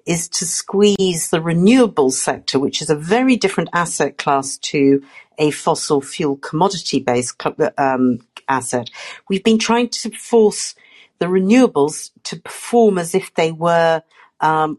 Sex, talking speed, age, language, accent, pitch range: female, 135 wpm, 50-69, English, British, 140-190 Hz